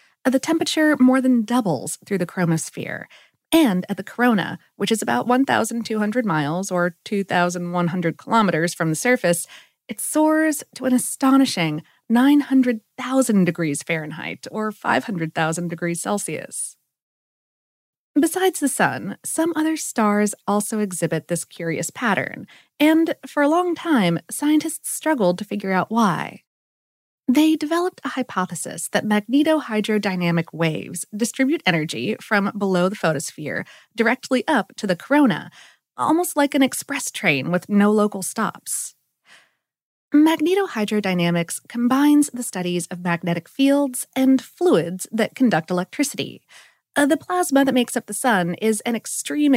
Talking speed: 130 wpm